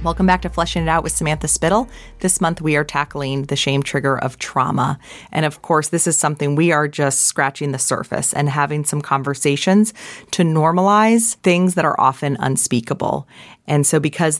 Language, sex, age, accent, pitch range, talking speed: English, female, 30-49, American, 135-160 Hz, 190 wpm